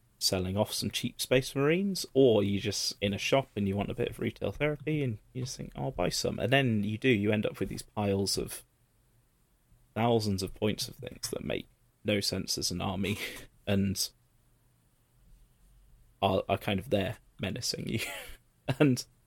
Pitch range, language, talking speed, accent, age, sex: 100-125 Hz, English, 185 wpm, British, 30-49, male